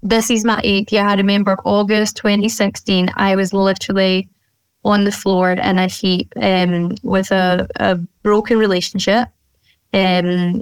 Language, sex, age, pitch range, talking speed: English, female, 10-29, 185-210 Hz, 140 wpm